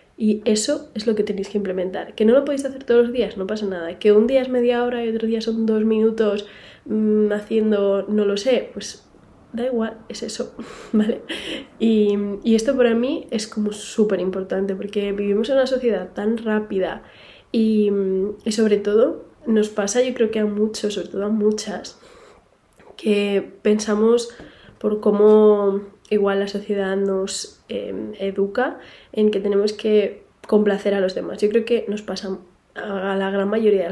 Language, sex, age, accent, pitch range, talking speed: Spanish, female, 20-39, Spanish, 195-225 Hz, 175 wpm